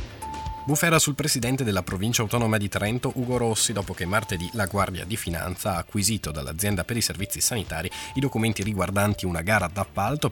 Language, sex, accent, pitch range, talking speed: Italian, male, native, 95-120 Hz, 175 wpm